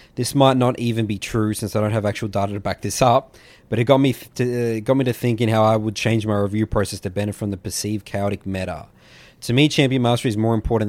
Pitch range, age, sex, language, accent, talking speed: 105-125 Hz, 20-39, male, English, Australian, 240 wpm